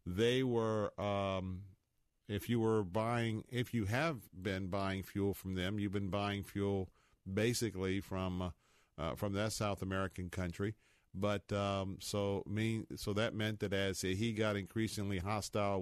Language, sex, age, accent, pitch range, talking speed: English, male, 50-69, American, 95-115 Hz, 155 wpm